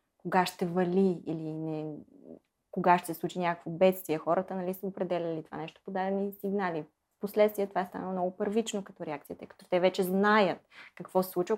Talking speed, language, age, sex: 180 wpm, Bulgarian, 20-39, female